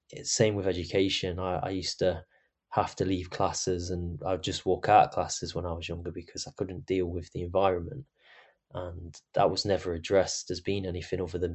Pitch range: 90-95 Hz